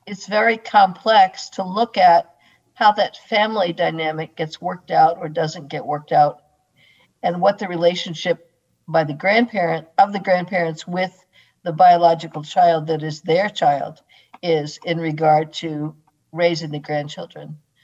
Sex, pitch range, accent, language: female, 165-200 Hz, American, English